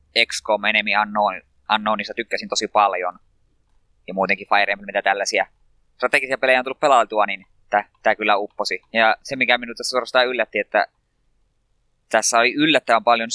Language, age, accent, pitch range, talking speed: Finnish, 20-39, native, 105-120 Hz, 155 wpm